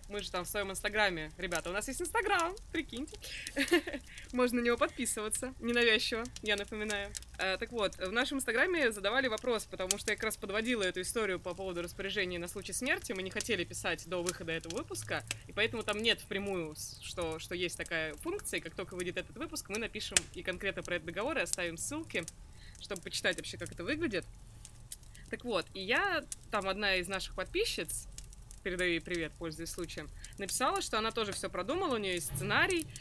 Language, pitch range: Russian, 180-245 Hz